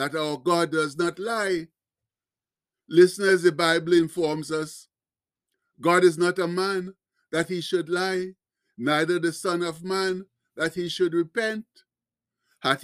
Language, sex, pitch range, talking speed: English, male, 160-190 Hz, 140 wpm